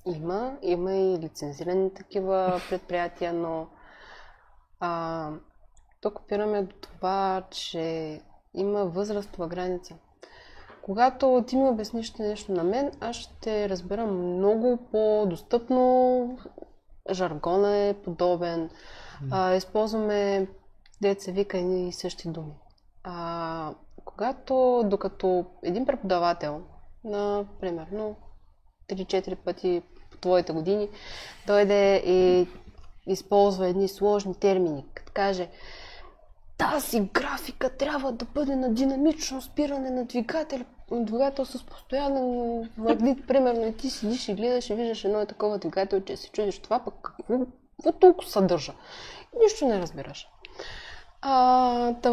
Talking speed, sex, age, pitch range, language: 110 wpm, female, 20-39, 180-250 Hz, Bulgarian